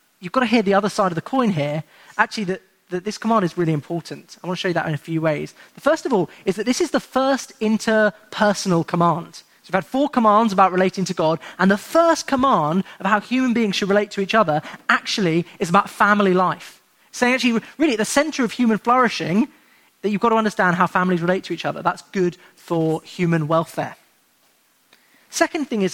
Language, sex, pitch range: English, male, 170-225 Hz